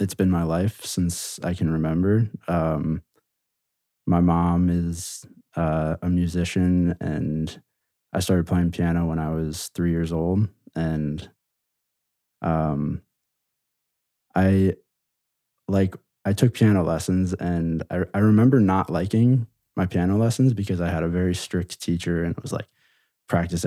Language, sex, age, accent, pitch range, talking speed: English, male, 20-39, American, 85-95 Hz, 140 wpm